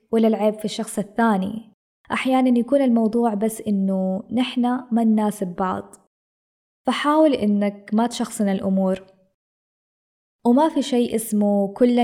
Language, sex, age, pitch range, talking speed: Arabic, female, 20-39, 200-235 Hz, 120 wpm